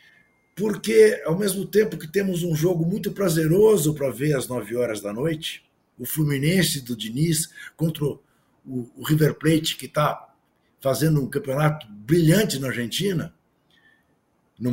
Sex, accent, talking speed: male, Brazilian, 140 wpm